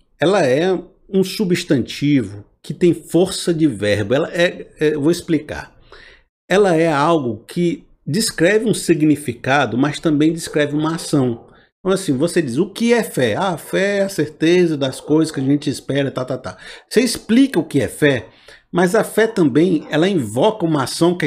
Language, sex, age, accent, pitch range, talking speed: Portuguese, male, 50-69, Brazilian, 150-190 Hz, 185 wpm